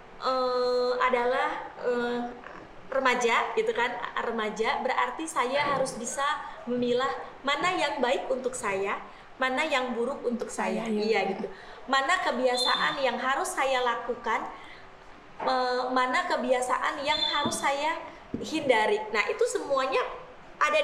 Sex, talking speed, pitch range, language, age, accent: female, 120 wpm, 245-290 Hz, Indonesian, 20-39, native